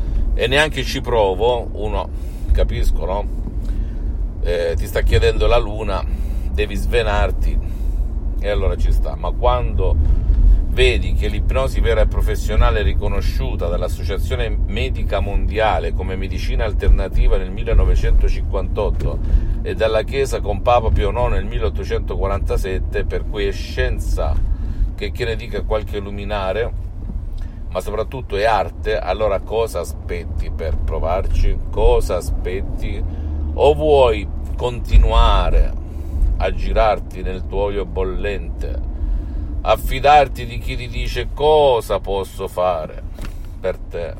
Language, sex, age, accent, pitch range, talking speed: Italian, male, 50-69, native, 75-100 Hz, 115 wpm